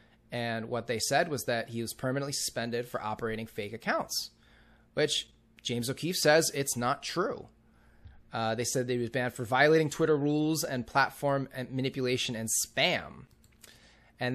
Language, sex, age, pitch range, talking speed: English, male, 30-49, 120-150 Hz, 165 wpm